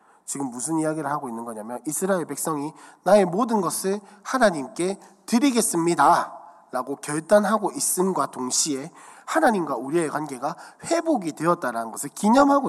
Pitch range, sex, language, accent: 160-240 Hz, male, Korean, native